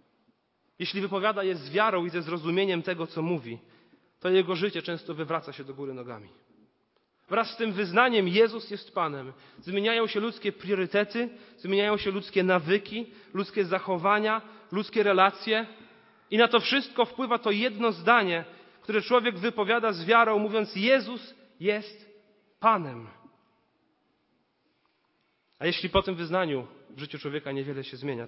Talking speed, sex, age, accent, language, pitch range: 140 wpm, male, 30-49, native, Polish, 140-210 Hz